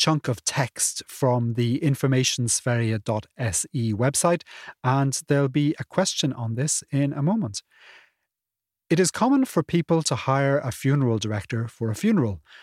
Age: 30-49